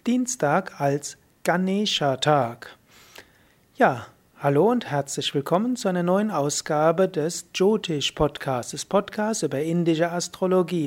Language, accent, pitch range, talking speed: German, German, 150-180 Hz, 105 wpm